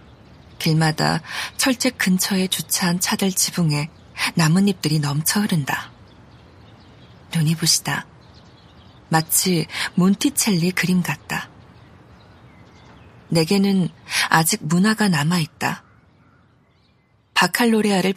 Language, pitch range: Korean, 160-195 Hz